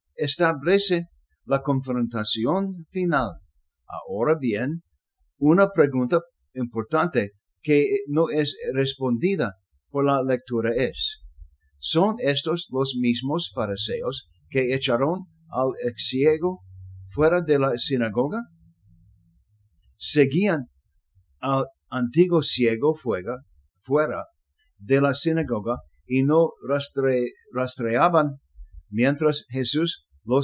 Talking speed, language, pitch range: 90 wpm, English, 95-155 Hz